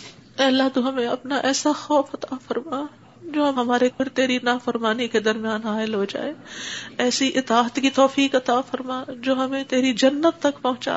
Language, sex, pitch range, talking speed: Urdu, female, 240-270 Hz, 180 wpm